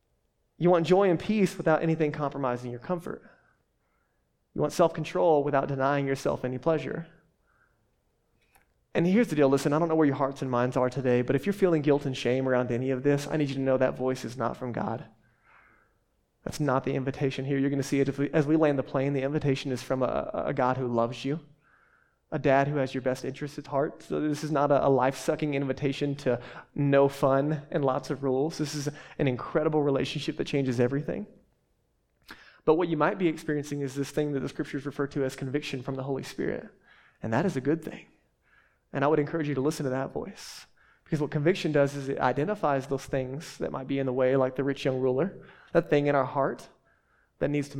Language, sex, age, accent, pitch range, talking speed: English, male, 20-39, American, 135-150 Hz, 220 wpm